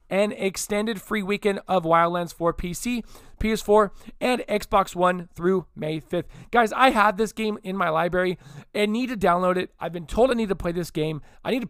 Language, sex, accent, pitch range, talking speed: English, male, American, 160-210 Hz, 205 wpm